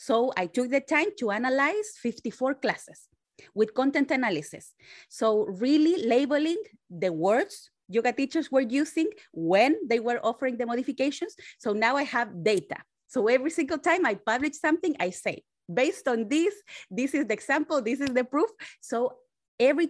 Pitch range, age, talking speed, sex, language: 215-295 Hz, 30-49, 165 wpm, female, English